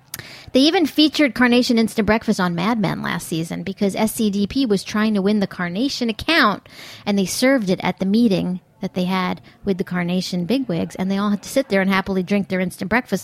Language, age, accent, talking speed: English, 40-59, American, 215 wpm